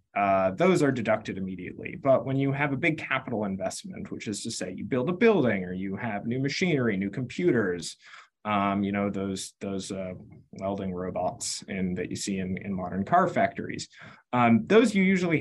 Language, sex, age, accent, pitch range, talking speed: English, male, 20-39, American, 100-135 Hz, 190 wpm